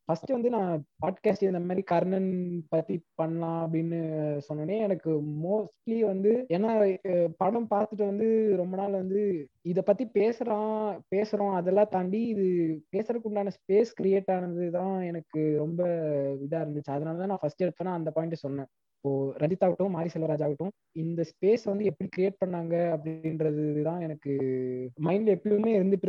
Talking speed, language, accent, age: 140 wpm, Tamil, native, 20-39